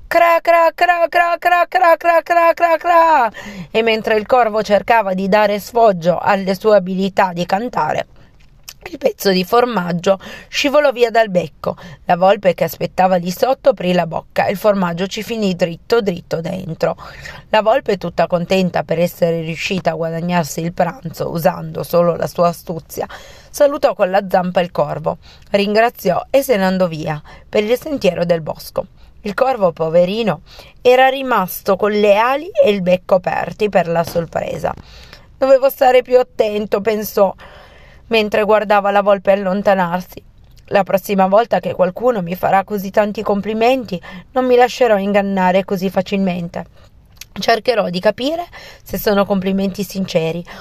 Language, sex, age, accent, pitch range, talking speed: Italian, female, 30-49, native, 180-225 Hz, 140 wpm